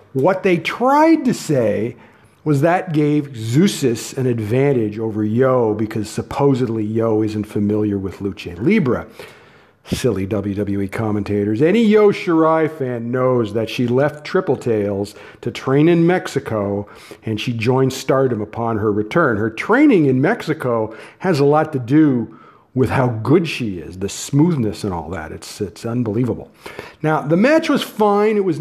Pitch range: 115-185 Hz